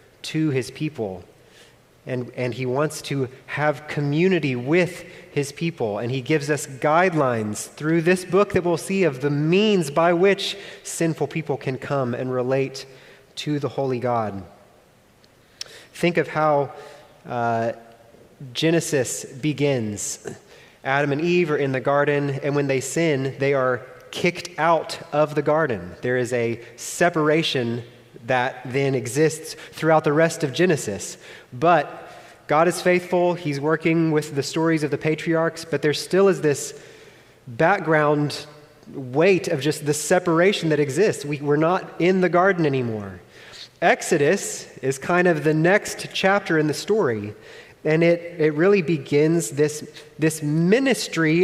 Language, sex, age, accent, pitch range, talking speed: English, male, 30-49, American, 130-165 Hz, 145 wpm